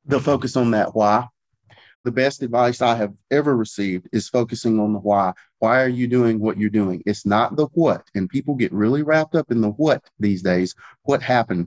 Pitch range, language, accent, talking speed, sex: 105-125 Hz, English, American, 210 wpm, male